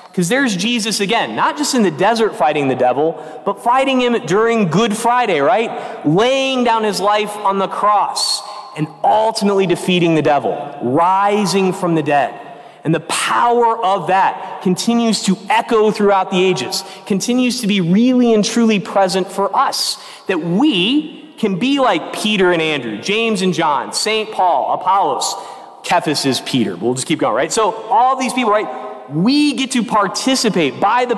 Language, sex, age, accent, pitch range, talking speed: English, male, 30-49, American, 185-245 Hz, 170 wpm